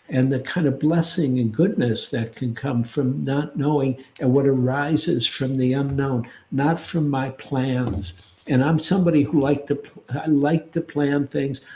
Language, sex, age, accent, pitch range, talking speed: English, male, 60-79, American, 125-145 Hz, 165 wpm